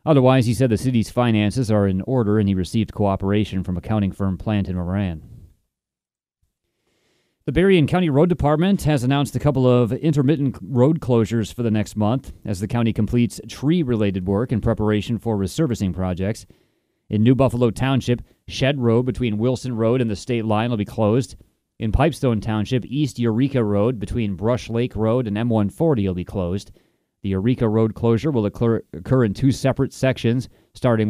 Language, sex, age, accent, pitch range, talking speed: English, male, 30-49, American, 105-130 Hz, 175 wpm